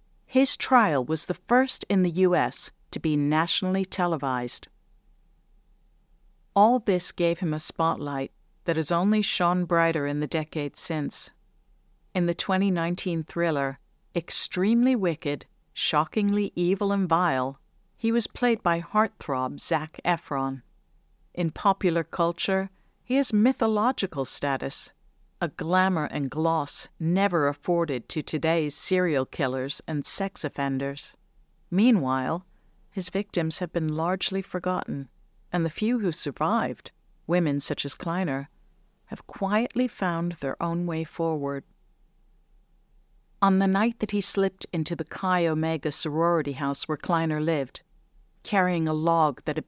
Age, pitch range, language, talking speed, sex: 50-69, 155-190 Hz, English, 130 wpm, female